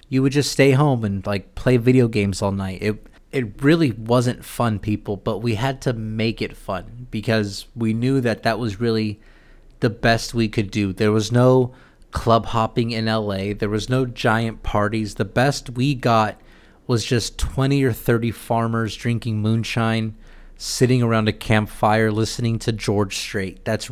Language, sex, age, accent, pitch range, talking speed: English, male, 30-49, American, 110-125 Hz, 175 wpm